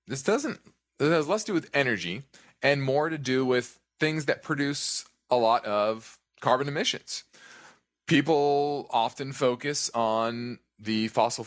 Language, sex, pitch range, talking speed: English, male, 110-140 Hz, 145 wpm